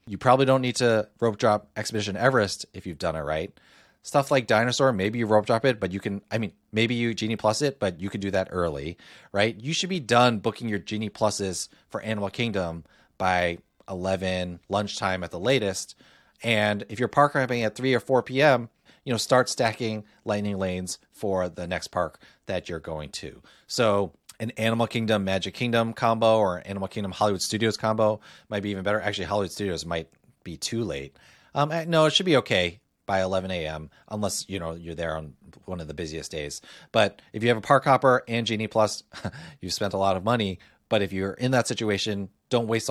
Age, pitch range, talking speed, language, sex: 30-49, 90-115 Hz, 210 wpm, English, male